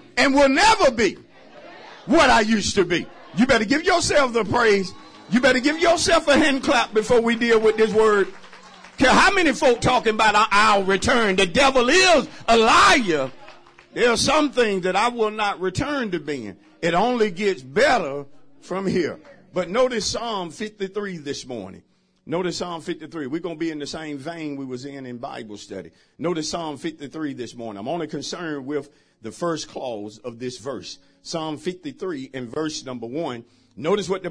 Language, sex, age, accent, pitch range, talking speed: English, male, 50-69, American, 140-230 Hz, 185 wpm